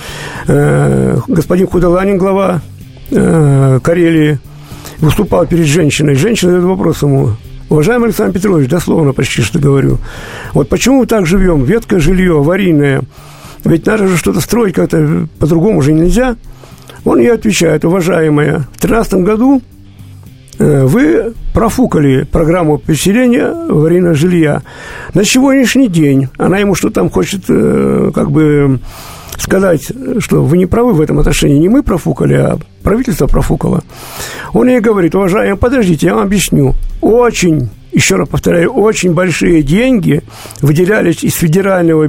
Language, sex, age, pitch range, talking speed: Russian, male, 50-69, 145-195 Hz, 130 wpm